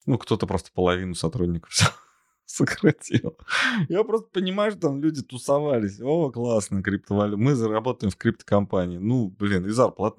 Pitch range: 90-120 Hz